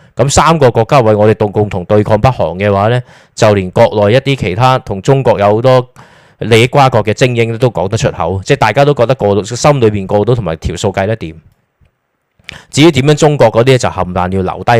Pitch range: 95-125 Hz